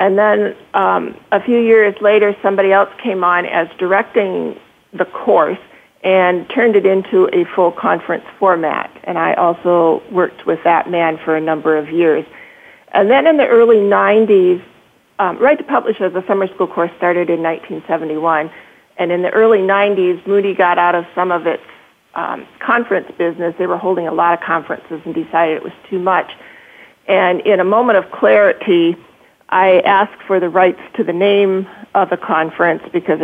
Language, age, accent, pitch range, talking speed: English, 40-59, American, 170-200 Hz, 180 wpm